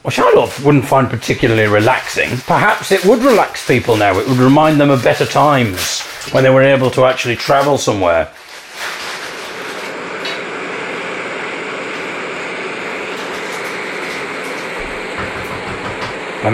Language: English